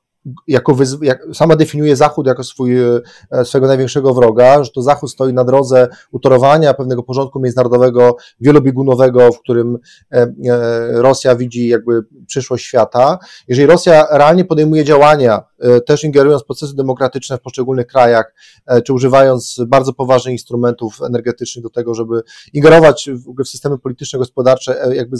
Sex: male